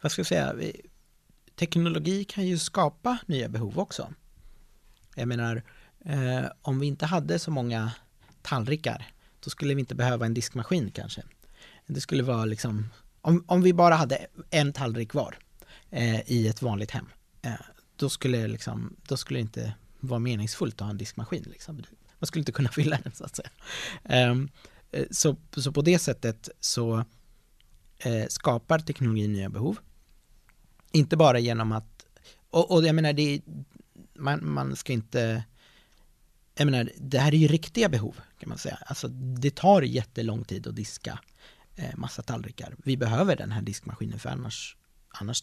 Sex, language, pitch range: male, English, 115-155 Hz